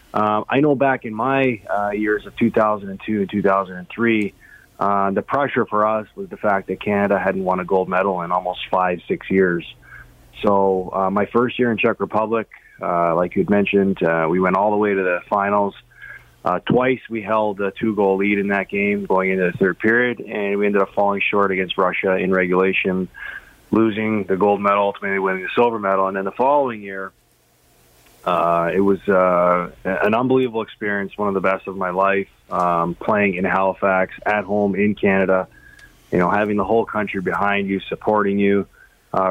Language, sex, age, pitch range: English, male, 20-39, 95-105 Hz